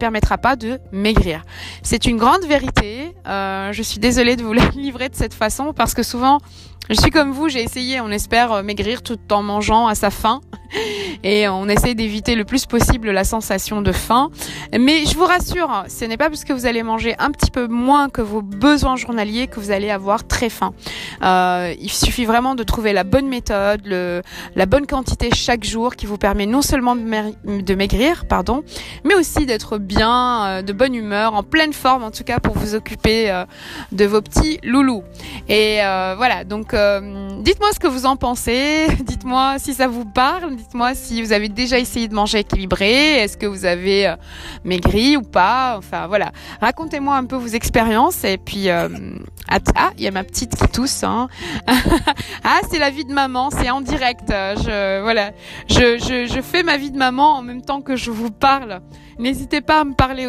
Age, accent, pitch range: 20-39, French, 205-265 Hz